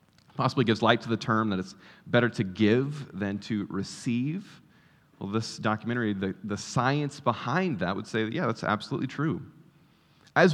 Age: 30-49